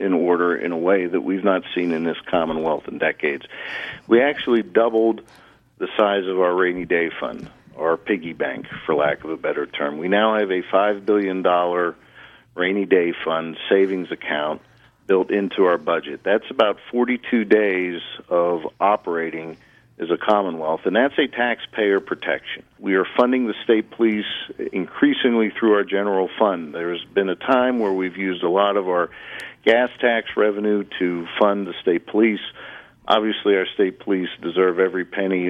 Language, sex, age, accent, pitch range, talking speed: English, male, 50-69, American, 90-110 Hz, 170 wpm